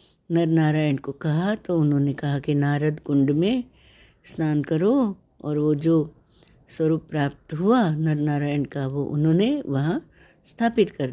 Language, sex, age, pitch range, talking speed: Hindi, female, 60-79, 145-205 Hz, 145 wpm